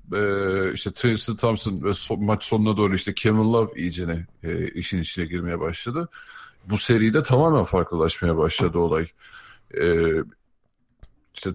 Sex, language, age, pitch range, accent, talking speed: male, Turkish, 50-69, 90-110 Hz, native, 135 wpm